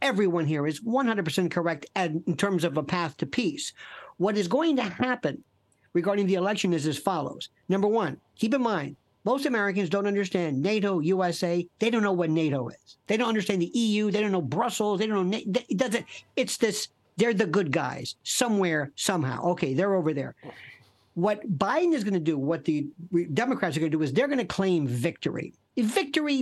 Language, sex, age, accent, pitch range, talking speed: English, male, 50-69, American, 170-225 Hz, 200 wpm